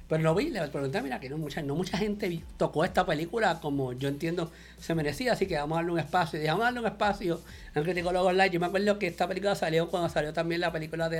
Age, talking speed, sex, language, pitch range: 50-69, 250 wpm, male, English, 150-195 Hz